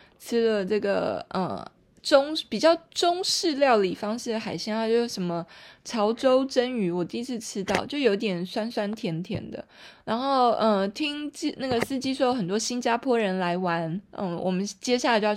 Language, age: Chinese, 20-39